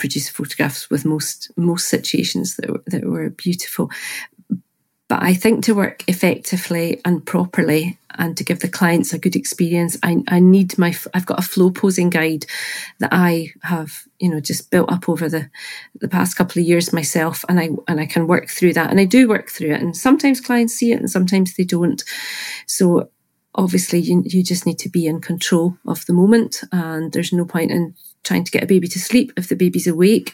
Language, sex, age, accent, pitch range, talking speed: English, female, 40-59, British, 165-190 Hz, 210 wpm